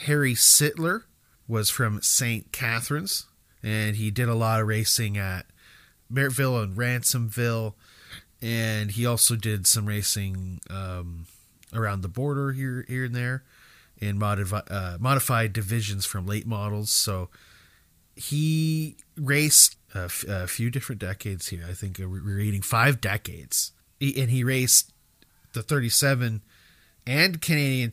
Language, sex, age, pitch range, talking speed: English, male, 30-49, 100-135 Hz, 135 wpm